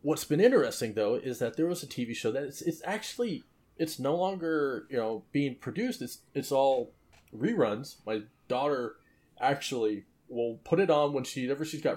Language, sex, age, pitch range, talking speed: English, male, 30-49, 110-145 Hz, 190 wpm